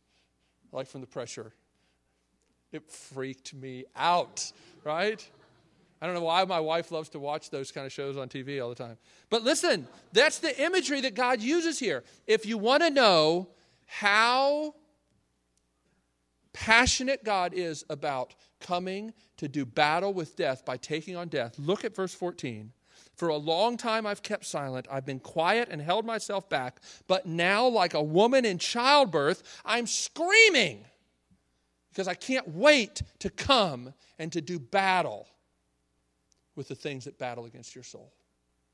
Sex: male